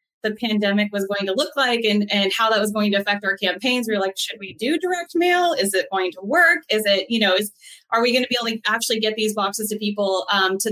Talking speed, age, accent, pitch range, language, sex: 280 wpm, 20-39, American, 200-235 Hz, English, female